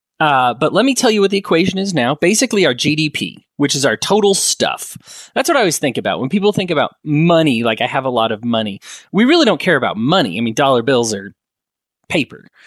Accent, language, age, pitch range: American, English, 30-49, 125-175 Hz